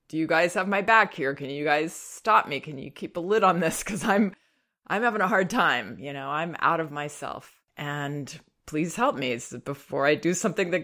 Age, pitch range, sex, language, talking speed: 30-49, 145-210 Hz, female, English, 225 wpm